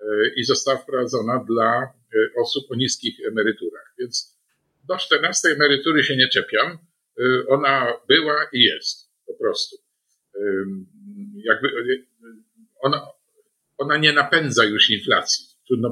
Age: 50-69